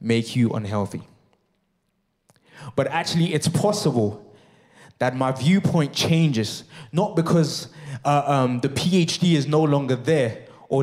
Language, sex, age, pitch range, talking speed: English, male, 20-39, 125-165 Hz, 120 wpm